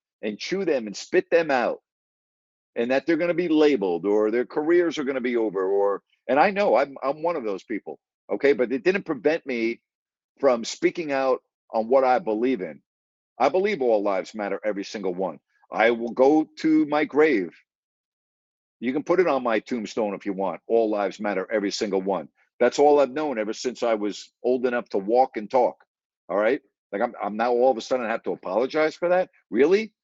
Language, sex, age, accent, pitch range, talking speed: English, male, 50-69, American, 110-155 Hz, 215 wpm